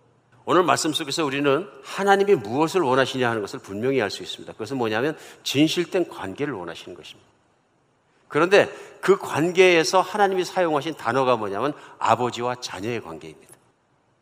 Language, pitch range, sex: Korean, 120-175 Hz, male